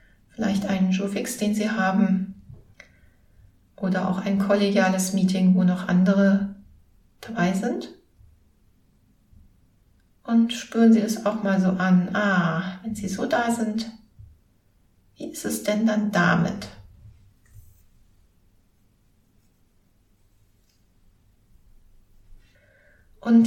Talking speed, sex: 95 wpm, female